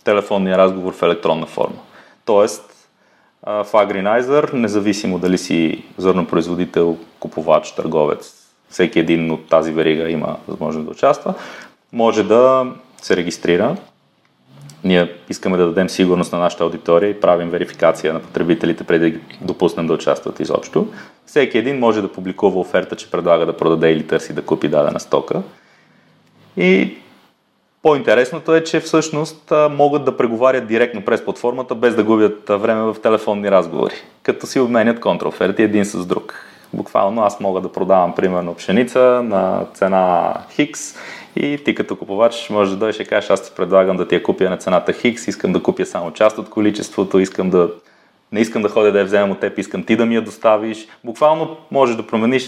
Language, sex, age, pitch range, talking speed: Bulgarian, male, 30-49, 90-115 Hz, 165 wpm